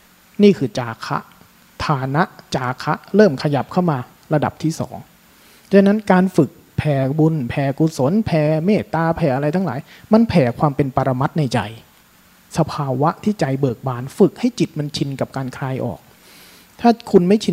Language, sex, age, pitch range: Thai, male, 30-49, 135-185 Hz